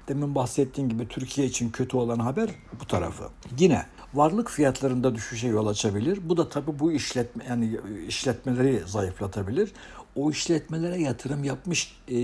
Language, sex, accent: Turkish, male, native